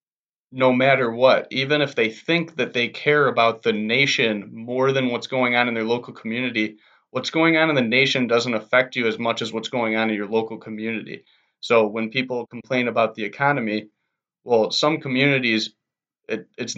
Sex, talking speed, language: male, 185 wpm, English